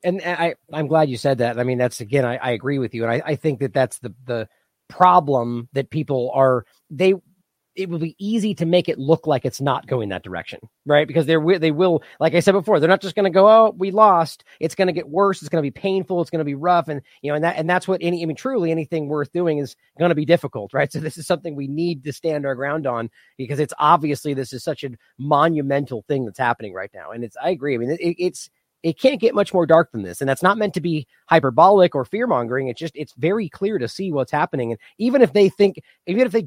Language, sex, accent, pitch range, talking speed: English, male, American, 140-185 Hz, 265 wpm